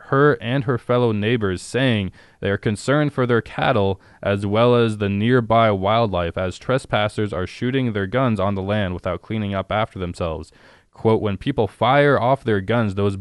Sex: male